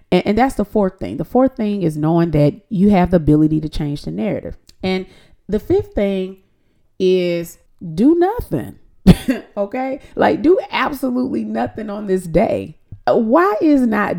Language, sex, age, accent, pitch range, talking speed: English, female, 30-49, American, 145-220 Hz, 155 wpm